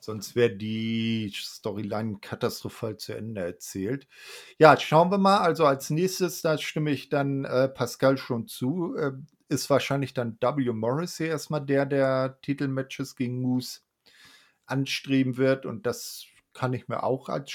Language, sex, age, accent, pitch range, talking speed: German, male, 40-59, German, 120-160 Hz, 155 wpm